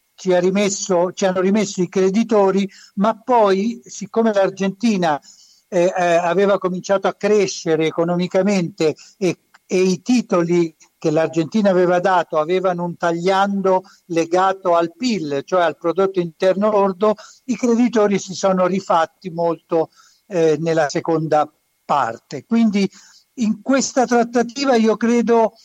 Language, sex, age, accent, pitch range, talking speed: Italian, male, 60-79, native, 170-205 Hz, 125 wpm